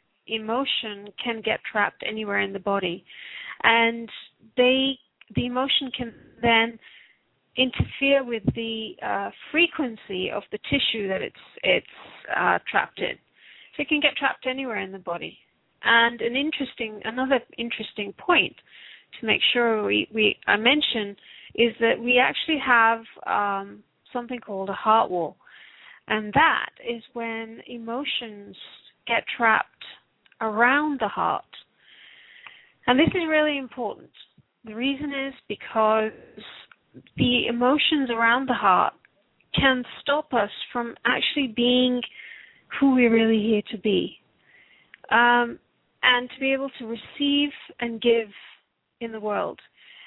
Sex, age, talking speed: female, 40-59, 130 wpm